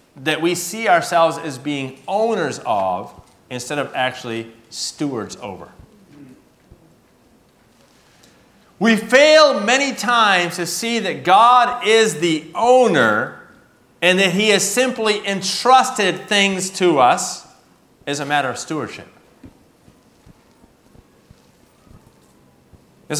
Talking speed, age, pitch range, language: 100 wpm, 30-49, 150-220 Hz, English